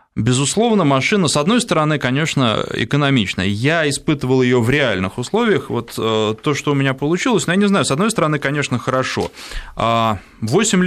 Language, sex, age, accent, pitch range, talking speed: Russian, male, 20-39, native, 110-150 Hz, 160 wpm